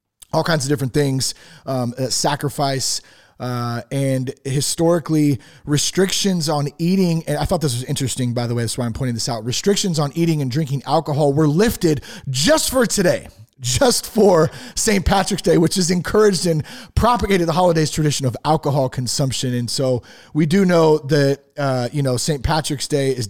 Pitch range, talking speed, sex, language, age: 125-160 Hz, 180 wpm, male, English, 30-49